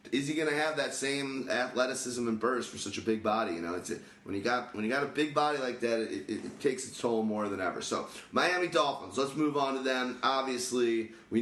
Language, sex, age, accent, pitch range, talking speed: English, male, 30-49, American, 110-135 Hz, 250 wpm